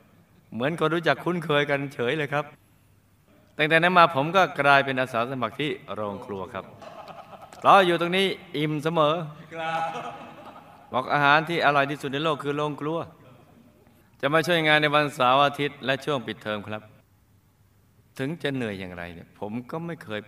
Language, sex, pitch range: Thai, male, 105-145 Hz